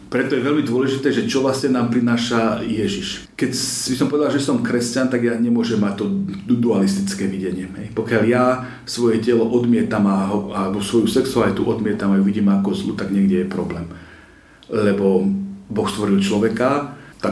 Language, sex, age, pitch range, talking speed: Slovak, male, 40-59, 100-120 Hz, 175 wpm